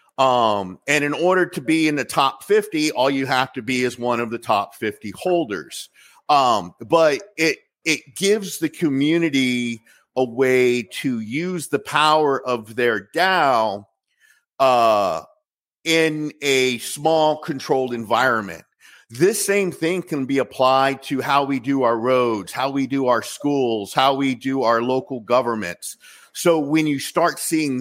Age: 50-69